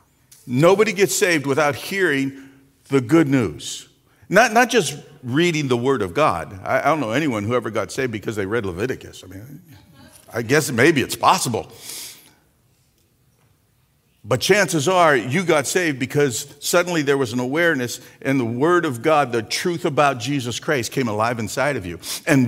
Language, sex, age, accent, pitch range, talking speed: English, male, 50-69, American, 130-185 Hz, 170 wpm